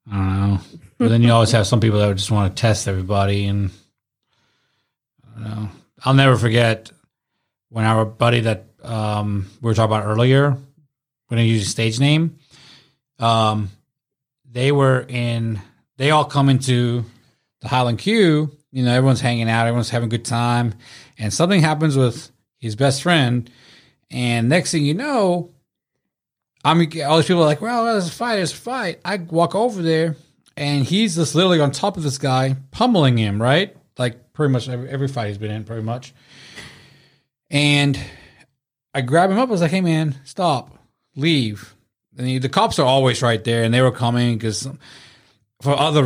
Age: 30-49